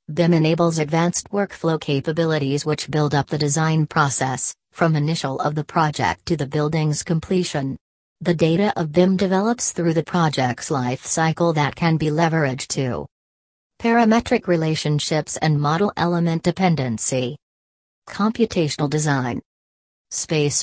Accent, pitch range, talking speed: American, 135-170 Hz, 130 wpm